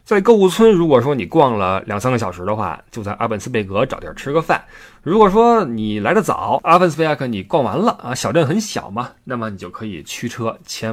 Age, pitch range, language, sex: 20-39, 110-165 Hz, Chinese, male